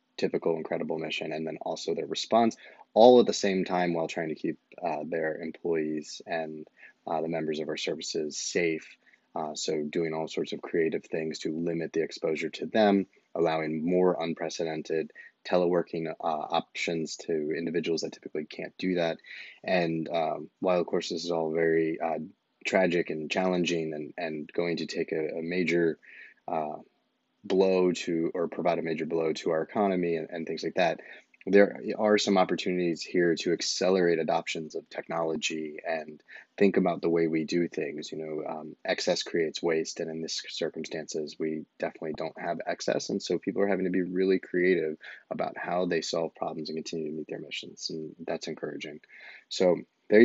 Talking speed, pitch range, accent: 180 wpm, 80-95 Hz, American